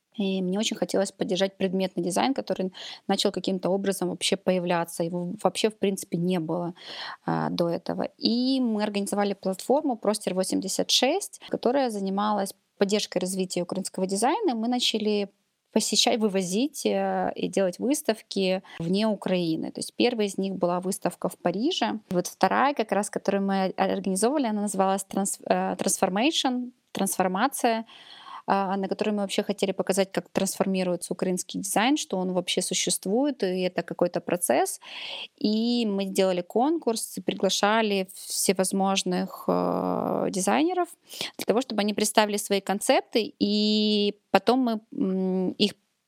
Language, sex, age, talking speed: Russian, female, 20-39, 135 wpm